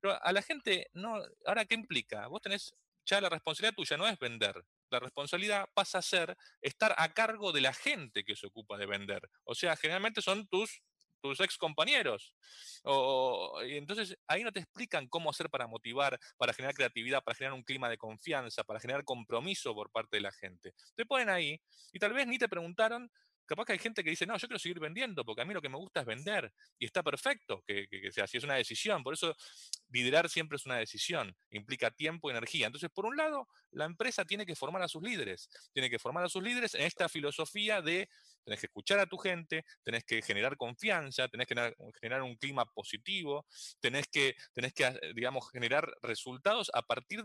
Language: Spanish